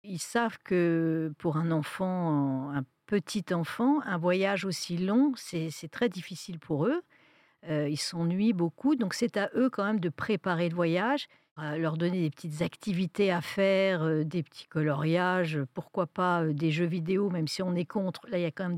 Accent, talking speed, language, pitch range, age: French, 185 wpm, French, 160-200 Hz, 50-69